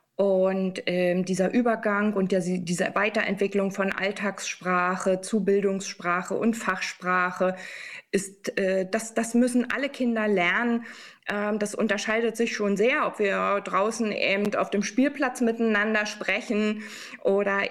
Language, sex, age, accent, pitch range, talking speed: German, female, 20-39, German, 185-210 Hz, 125 wpm